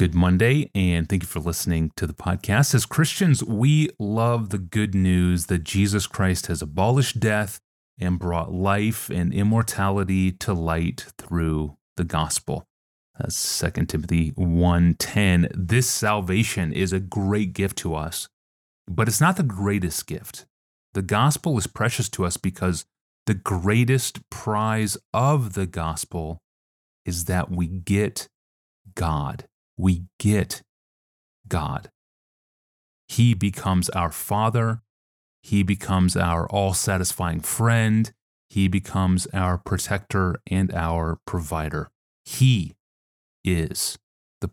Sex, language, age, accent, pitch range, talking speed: male, English, 30-49, American, 85-105 Hz, 125 wpm